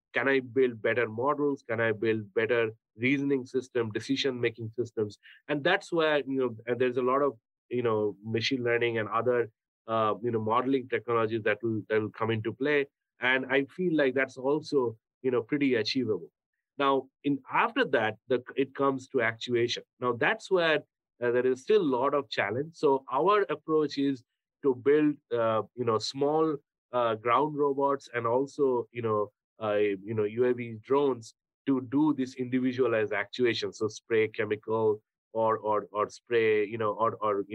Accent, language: Indian, English